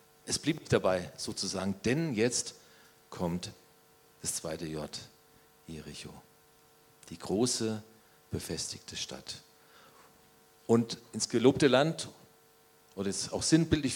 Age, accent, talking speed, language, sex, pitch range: 40-59, German, 100 wpm, German, male, 95-140 Hz